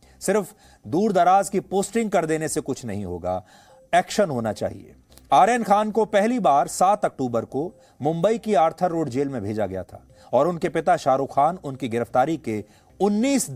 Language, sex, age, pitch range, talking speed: English, male, 40-59, 130-195 Hz, 175 wpm